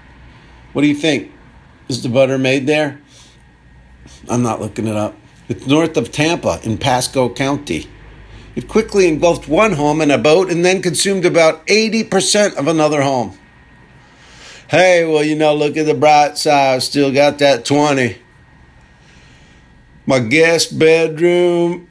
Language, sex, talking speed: English, male, 150 wpm